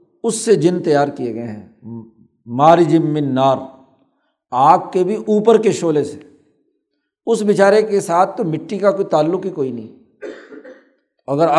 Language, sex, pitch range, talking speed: Urdu, male, 150-195 Hz, 155 wpm